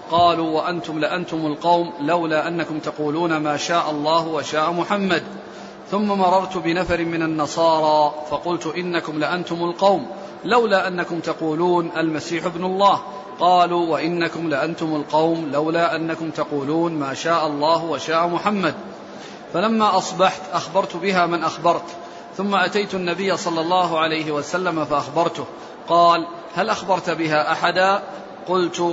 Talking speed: 120 wpm